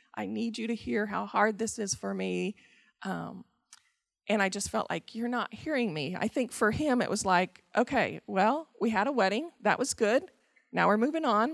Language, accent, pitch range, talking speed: English, American, 180-240 Hz, 215 wpm